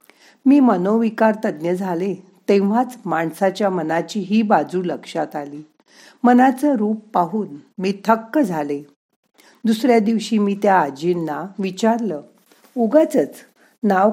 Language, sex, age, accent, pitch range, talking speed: Marathi, female, 50-69, native, 165-230 Hz, 105 wpm